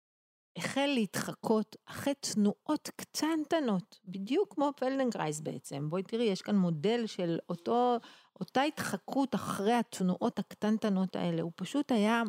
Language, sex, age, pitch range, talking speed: Hebrew, female, 40-59, 175-235 Hz, 120 wpm